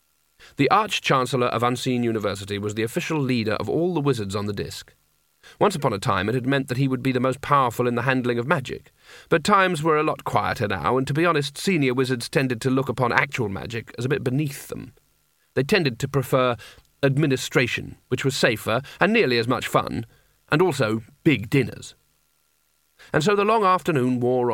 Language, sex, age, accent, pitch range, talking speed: English, male, 40-59, British, 120-145 Hz, 200 wpm